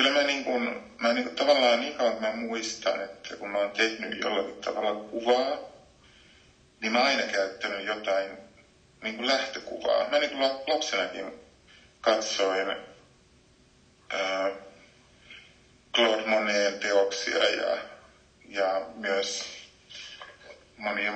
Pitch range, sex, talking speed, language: 100-120 Hz, male, 100 wpm, Finnish